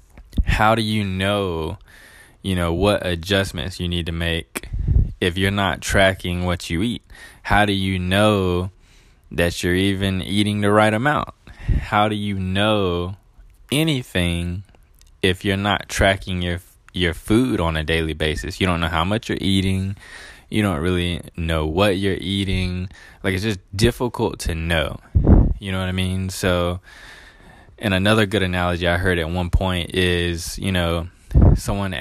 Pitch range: 85-100 Hz